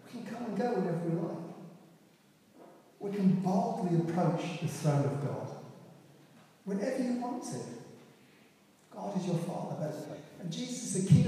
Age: 40-59